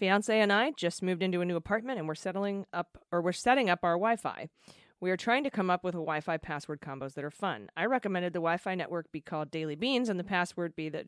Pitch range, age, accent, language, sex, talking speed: 160-200 Hz, 30-49, American, English, female, 255 wpm